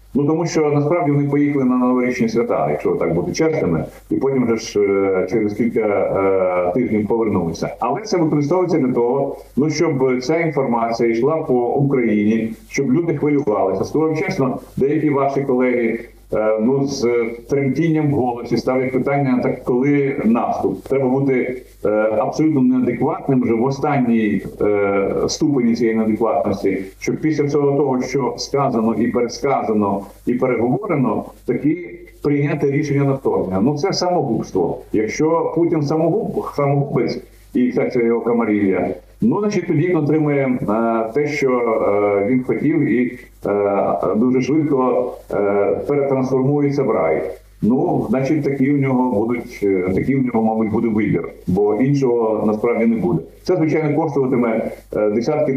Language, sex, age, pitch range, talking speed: Ukrainian, male, 40-59, 110-145 Hz, 135 wpm